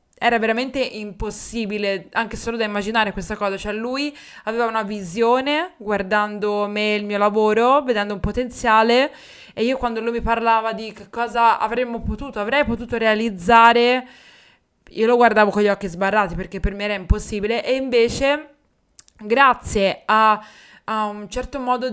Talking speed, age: 155 wpm, 20-39